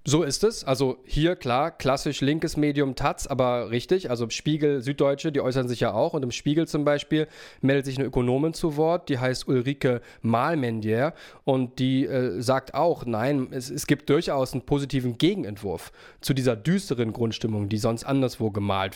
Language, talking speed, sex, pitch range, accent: English, 175 wpm, male, 120-150 Hz, German